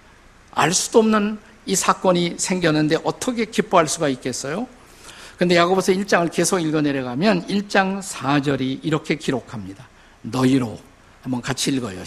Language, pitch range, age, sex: Korean, 140-205 Hz, 50-69, male